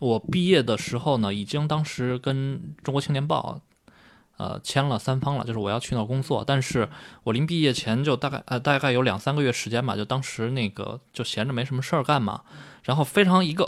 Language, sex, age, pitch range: Chinese, male, 20-39, 120-155 Hz